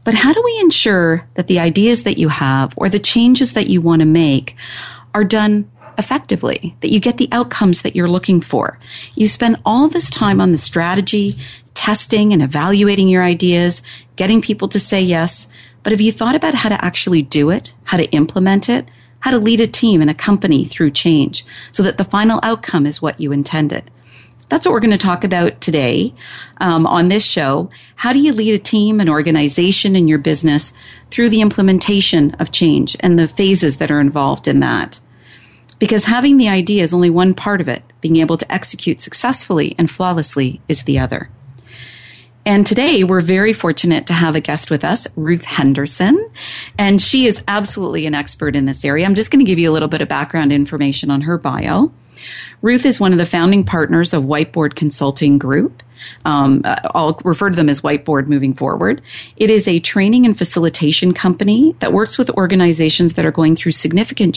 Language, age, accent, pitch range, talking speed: English, 40-59, American, 150-210 Hz, 195 wpm